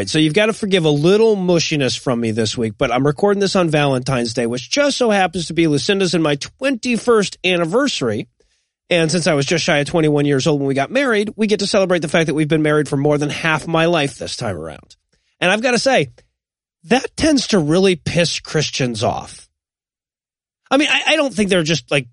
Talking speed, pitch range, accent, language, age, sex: 225 wpm, 145-200 Hz, American, English, 30-49, male